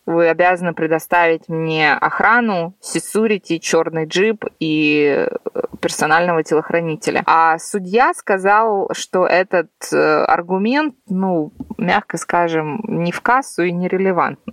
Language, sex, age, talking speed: Russian, female, 20-39, 105 wpm